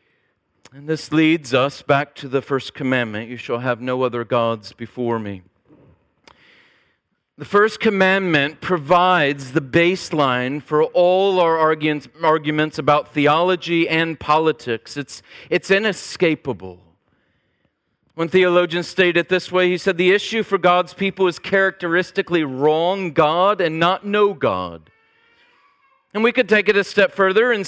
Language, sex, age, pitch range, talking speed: English, male, 40-59, 145-195 Hz, 135 wpm